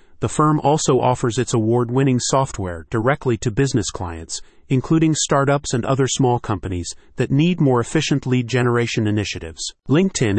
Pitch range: 105-140 Hz